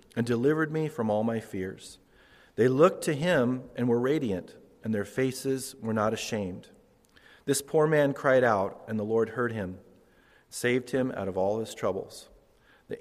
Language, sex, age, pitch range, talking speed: English, male, 40-59, 105-135 Hz, 175 wpm